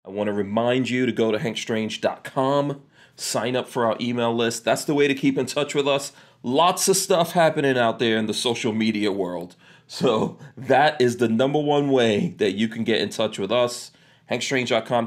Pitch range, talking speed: 105-135 Hz, 205 wpm